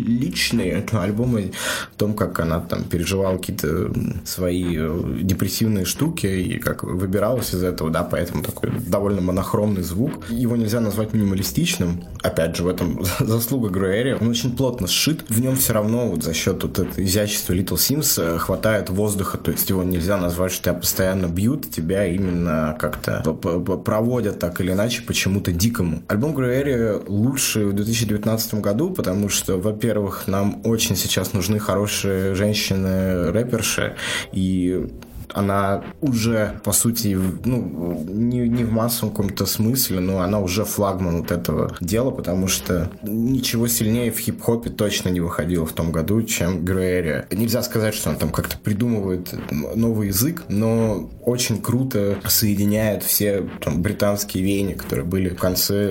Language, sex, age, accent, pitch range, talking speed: Russian, male, 20-39, native, 90-115 Hz, 150 wpm